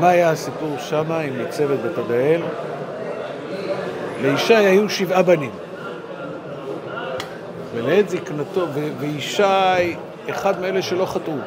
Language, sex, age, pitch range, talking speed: Hebrew, male, 60-79, 150-200 Hz, 95 wpm